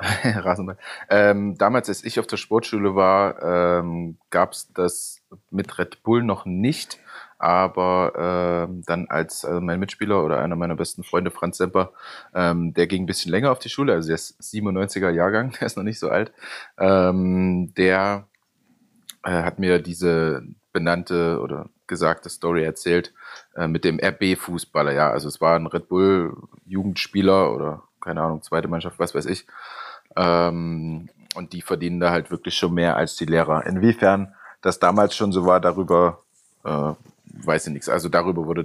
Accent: German